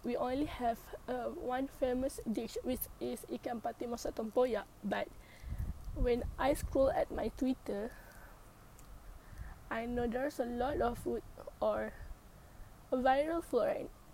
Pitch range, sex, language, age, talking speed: 210-265 Hz, female, English, 20-39, 120 wpm